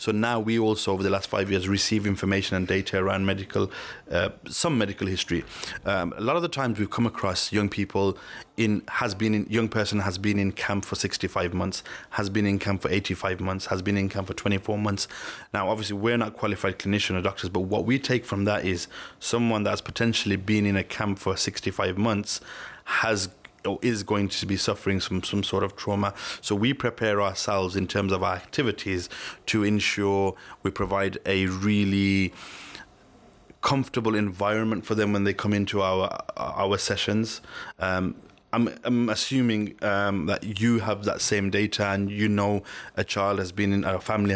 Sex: male